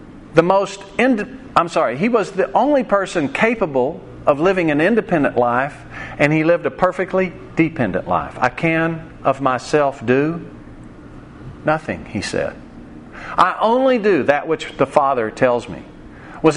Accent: American